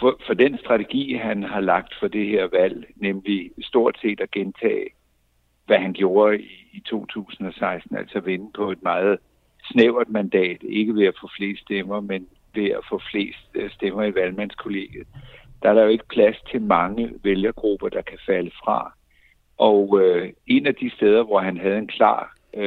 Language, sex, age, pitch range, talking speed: Danish, male, 60-79, 95-115 Hz, 170 wpm